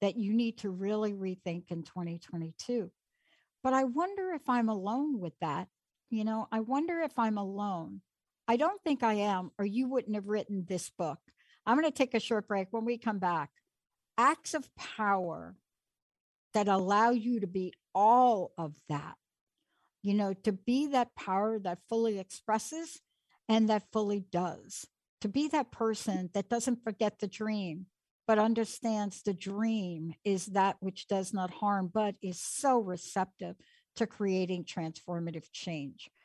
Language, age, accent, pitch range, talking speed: English, 60-79, American, 195-250 Hz, 160 wpm